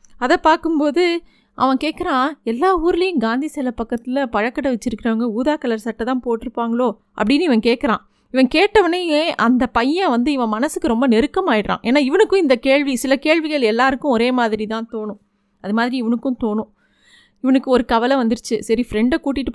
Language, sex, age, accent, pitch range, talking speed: Tamil, female, 30-49, native, 220-270 Hz, 155 wpm